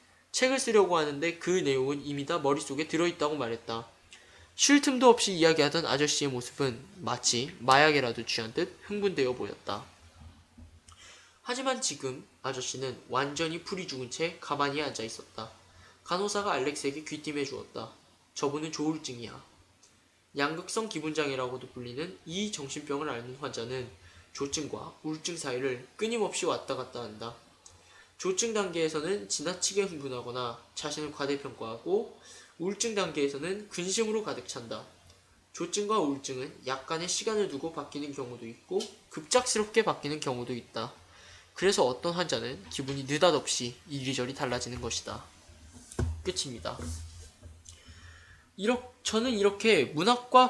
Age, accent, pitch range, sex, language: 20-39, native, 125-175 Hz, male, Korean